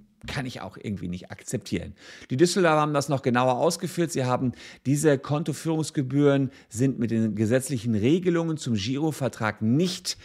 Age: 50-69